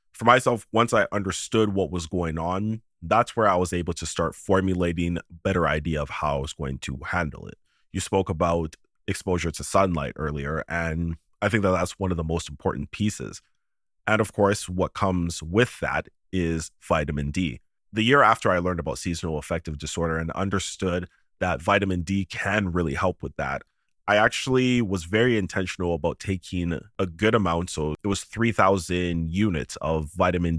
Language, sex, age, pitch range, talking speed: English, male, 30-49, 85-100 Hz, 180 wpm